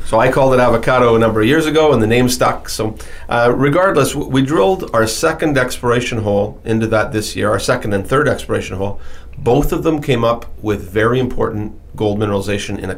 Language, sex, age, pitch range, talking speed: English, male, 40-59, 100-125 Hz, 210 wpm